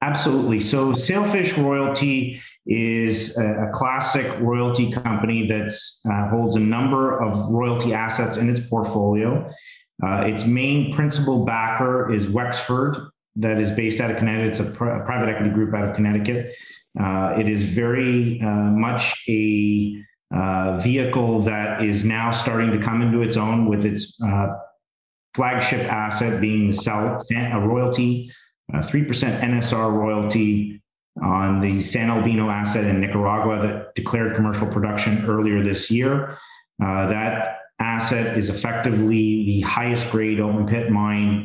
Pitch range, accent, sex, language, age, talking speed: 105-120 Hz, American, male, English, 30-49, 145 wpm